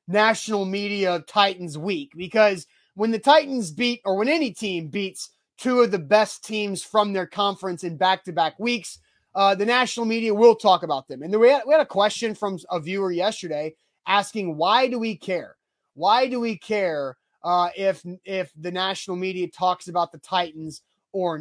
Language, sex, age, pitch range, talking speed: English, male, 30-49, 180-225 Hz, 180 wpm